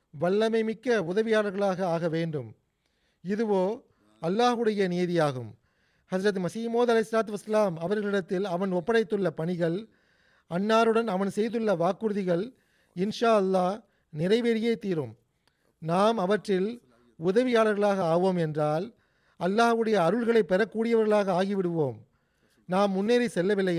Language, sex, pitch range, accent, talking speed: Tamil, male, 170-215 Hz, native, 90 wpm